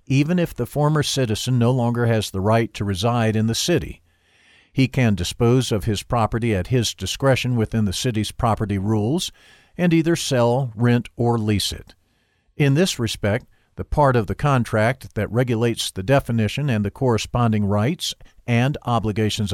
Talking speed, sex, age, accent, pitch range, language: 165 wpm, male, 50-69, American, 105-130 Hz, English